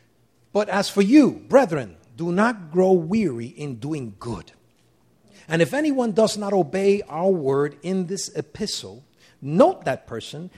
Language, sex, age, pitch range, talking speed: English, male, 50-69, 145-225 Hz, 145 wpm